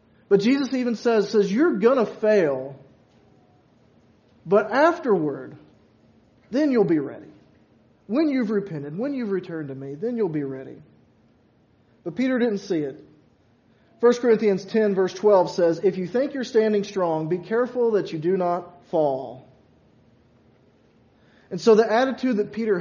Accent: American